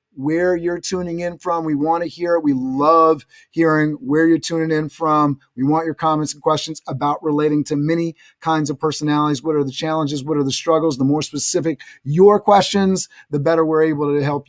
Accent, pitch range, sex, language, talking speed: American, 155-200 Hz, male, English, 205 wpm